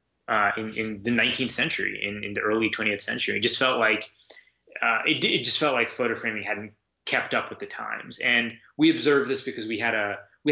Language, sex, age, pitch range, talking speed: English, male, 20-39, 100-120 Hz, 220 wpm